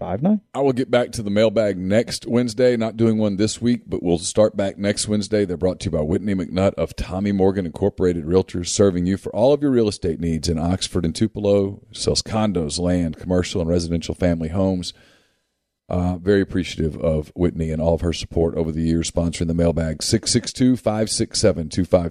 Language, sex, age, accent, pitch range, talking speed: English, male, 40-59, American, 85-110 Hz, 195 wpm